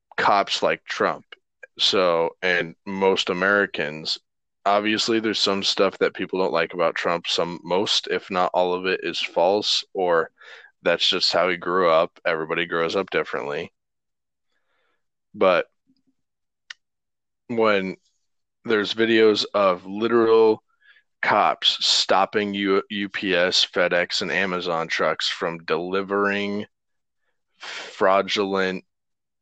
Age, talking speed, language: 20-39, 110 wpm, English